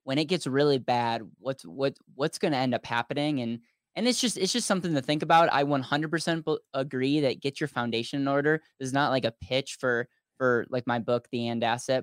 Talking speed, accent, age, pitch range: 230 wpm, American, 10-29, 120-140 Hz